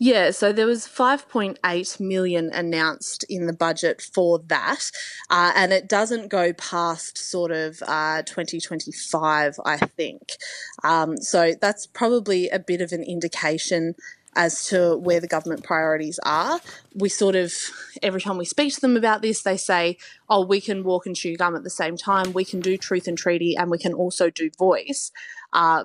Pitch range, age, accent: 165-195 Hz, 20-39, Australian